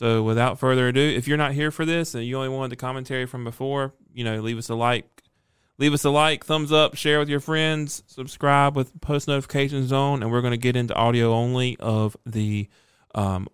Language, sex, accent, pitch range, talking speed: English, male, American, 115-150 Hz, 220 wpm